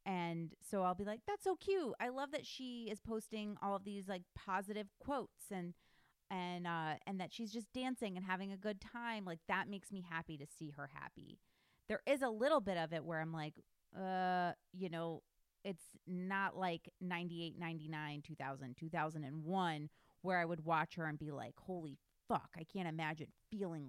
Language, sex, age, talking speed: English, female, 30-49, 190 wpm